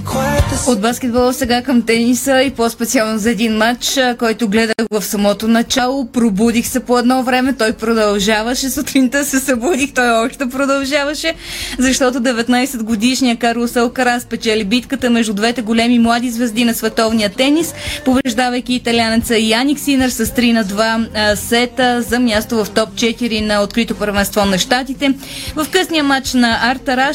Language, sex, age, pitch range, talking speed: Bulgarian, female, 20-39, 225-265 Hz, 150 wpm